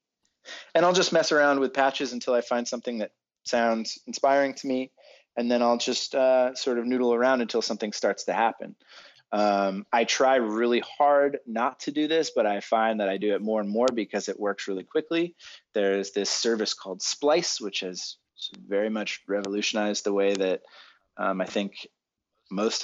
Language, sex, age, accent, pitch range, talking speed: English, male, 20-39, American, 95-120 Hz, 185 wpm